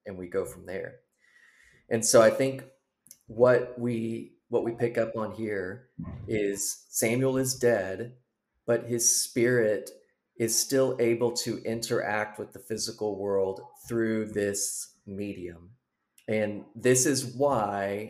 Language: English